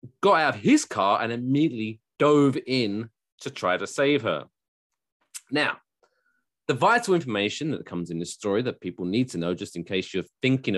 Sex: male